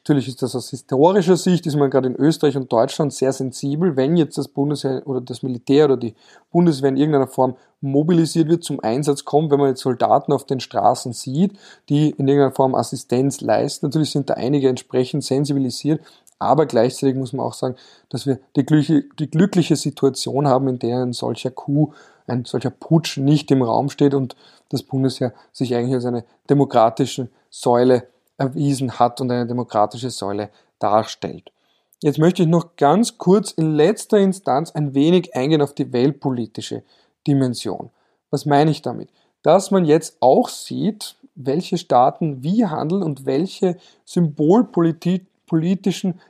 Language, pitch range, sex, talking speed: German, 130-165 Hz, male, 160 wpm